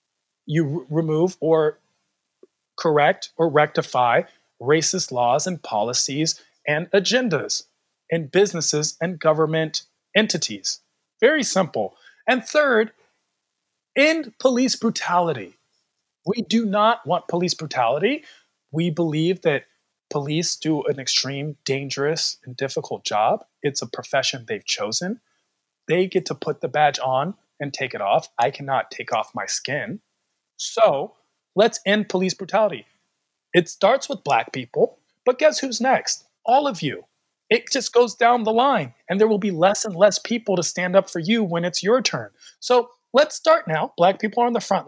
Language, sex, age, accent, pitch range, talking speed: English, male, 40-59, American, 160-225 Hz, 150 wpm